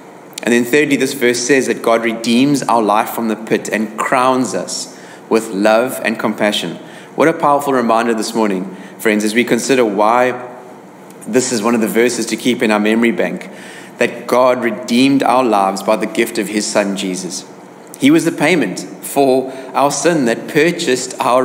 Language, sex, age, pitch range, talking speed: English, male, 30-49, 110-135 Hz, 185 wpm